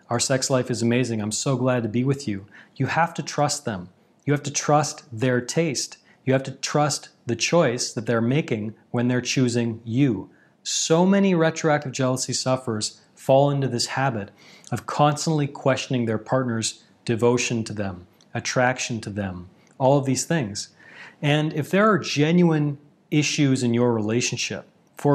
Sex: male